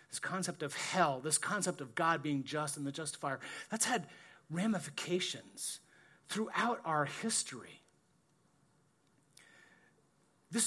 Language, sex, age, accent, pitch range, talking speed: English, male, 40-59, American, 150-215 Hz, 110 wpm